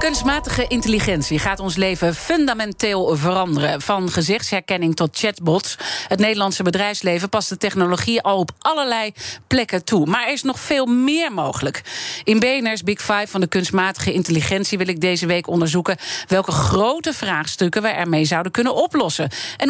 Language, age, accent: Dutch, 40-59, Dutch